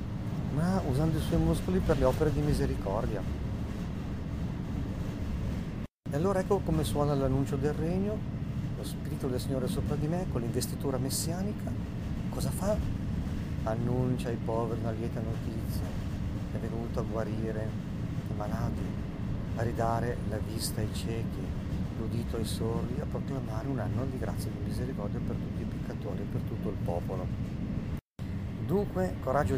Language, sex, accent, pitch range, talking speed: Italian, male, native, 95-115 Hz, 145 wpm